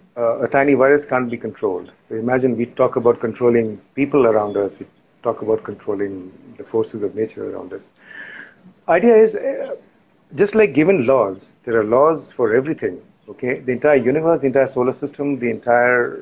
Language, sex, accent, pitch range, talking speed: English, male, Indian, 115-150 Hz, 175 wpm